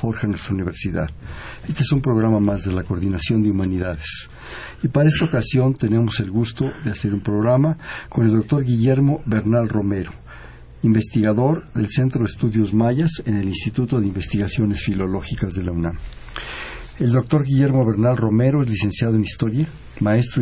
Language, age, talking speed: Spanish, 60-79, 160 wpm